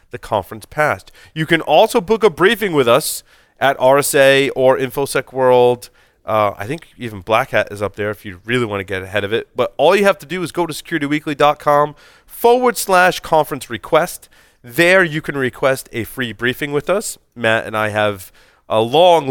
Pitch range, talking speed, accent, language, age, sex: 105-145 Hz, 195 wpm, American, English, 30-49, male